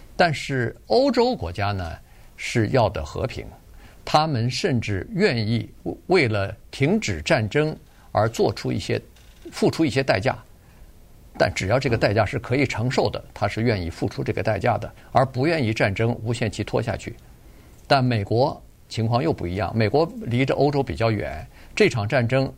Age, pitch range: 50-69, 105-135 Hz